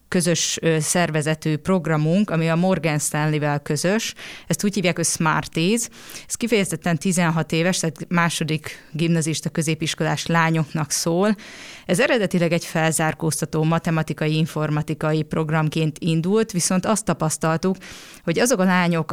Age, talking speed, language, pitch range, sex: 20-39, 115 wpm, Hungarian, 155-180 Hz, female